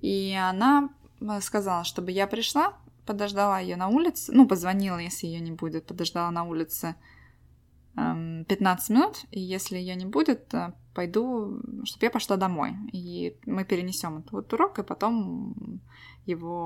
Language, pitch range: Russian, 175-230 Hz